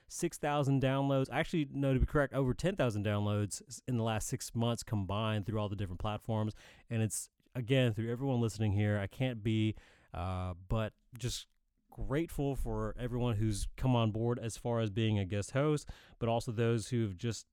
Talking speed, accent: 190 wpm, American